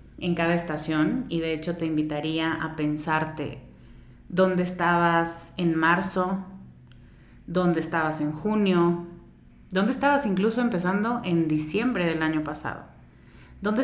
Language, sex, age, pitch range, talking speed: Spanish, female, 30-49, 165-200 Hz, 120 wpm